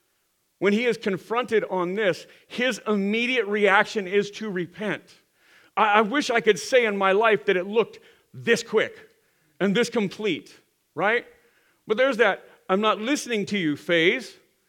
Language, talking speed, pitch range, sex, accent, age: English, 160 wpm, 190-260 Hz, male, American, 40-59